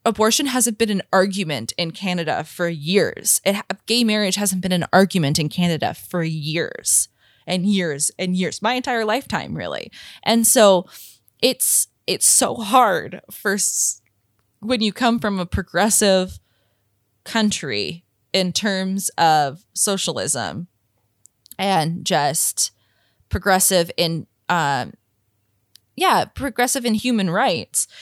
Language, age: English, 20-39